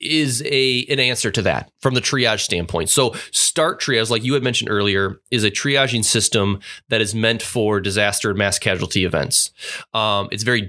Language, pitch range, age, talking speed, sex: English, 105-135 Hz, 20-39, 190 wpm, male